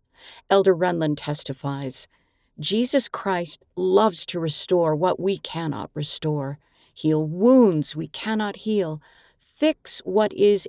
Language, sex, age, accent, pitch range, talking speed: English, female, 50-69, American, 160-210 Hz, 110 wpm